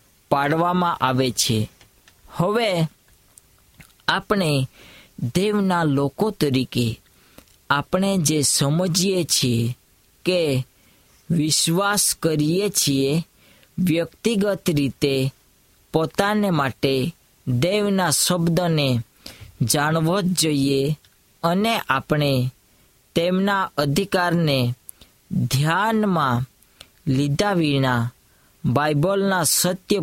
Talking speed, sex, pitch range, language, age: 50 wpm, female, 130-180 Hz, Hindi, 20-39